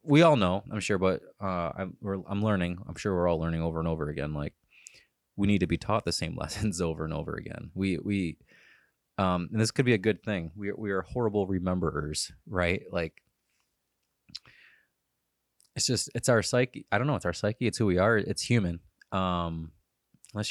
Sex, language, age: male, English, 20-39